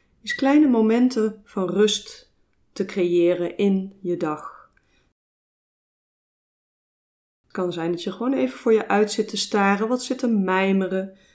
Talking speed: 135 wpm